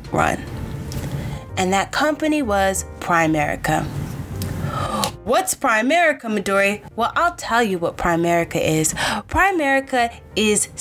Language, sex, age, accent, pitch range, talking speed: English, female, 20-39, American, 180-275 Hz, 100 wpm